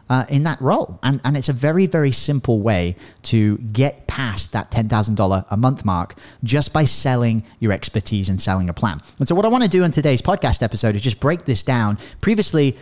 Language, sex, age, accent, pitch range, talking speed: English, male, 30-49, British, 110-145 Hz, 215 wpm